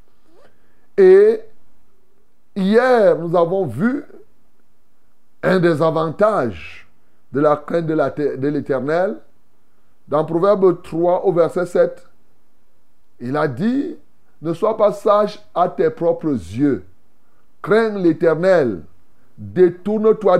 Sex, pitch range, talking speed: male, 145-195 Hz, 100 wpm